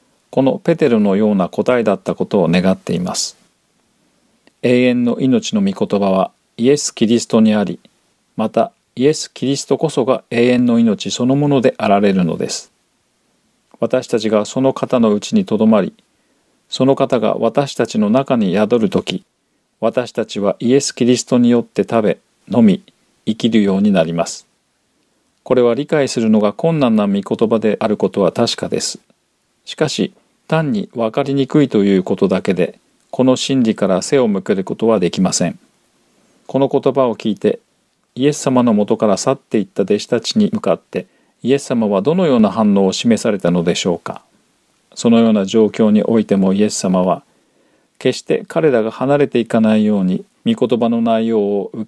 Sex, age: male, 40-59